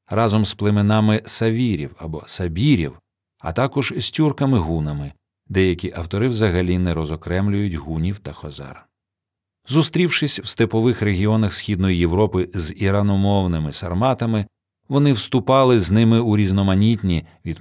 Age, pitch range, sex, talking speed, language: 40-59, 85-115 Hz, male, 115 wpm, Ukrainian